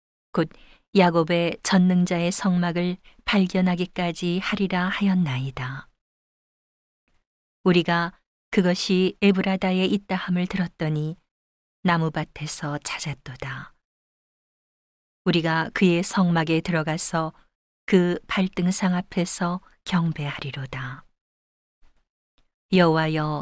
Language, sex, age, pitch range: Korean, female, 40-59, 160-190 Hz